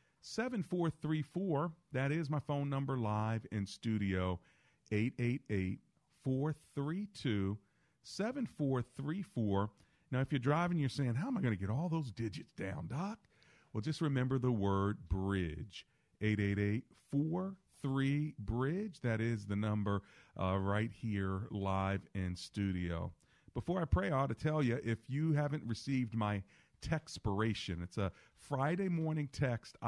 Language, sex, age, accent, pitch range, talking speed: English, male, 40-59, American, 100-140 Hz, 140 wpm